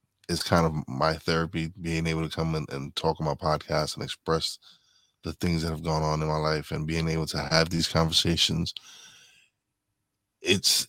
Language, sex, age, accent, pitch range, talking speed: English, male, 20-39, American, 80-95 Hz, 185 wpm